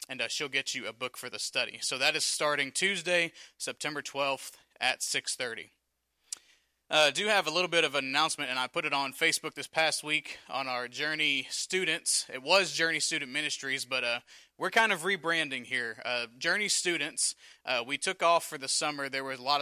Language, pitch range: English, 130-160 Hz